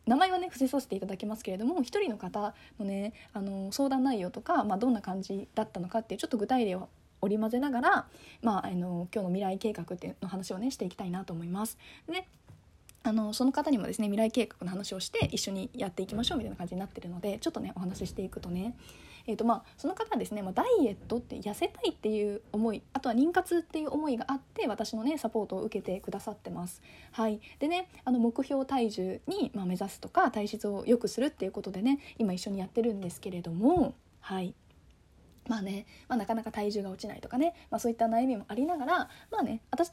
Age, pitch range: 20-39, 195-255 Hz